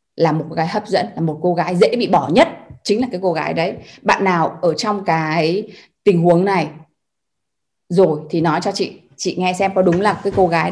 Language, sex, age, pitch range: Vietnamese, female, 20-39, 185-255 Hz